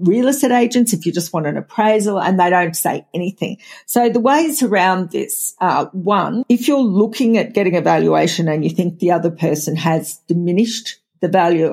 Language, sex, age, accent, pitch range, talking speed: English, female, 50-69, Australian, 170-215 Hz, 195 wpm